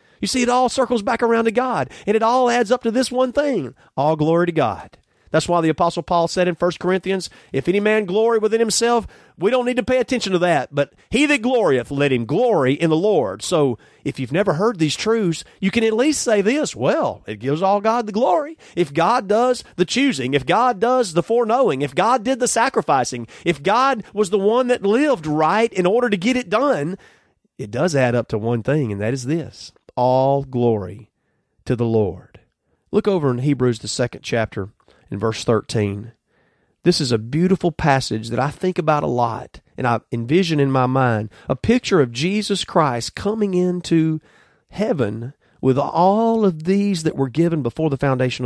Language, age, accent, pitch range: English, 40-59, American, 130-215 Hz